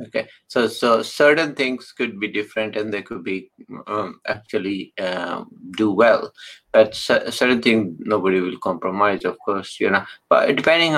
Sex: male